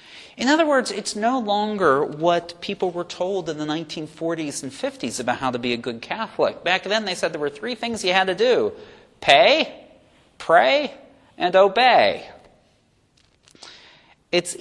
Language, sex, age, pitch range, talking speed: English, male, 40-59, 135-200 Hz, 160 wpm